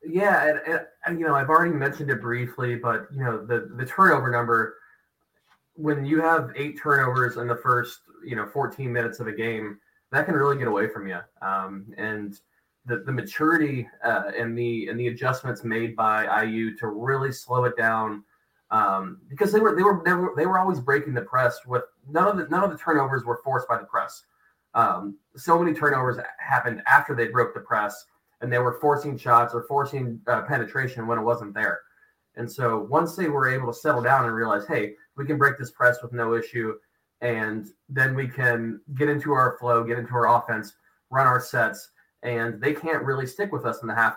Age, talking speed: 20-39, 210 wpm